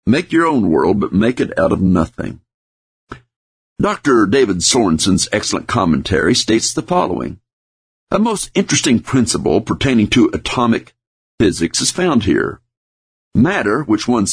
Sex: male